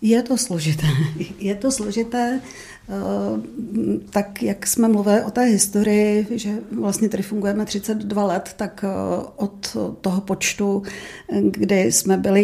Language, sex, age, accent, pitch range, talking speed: Czech, female, 40-59, native, 185-210 Hz, 125 wpm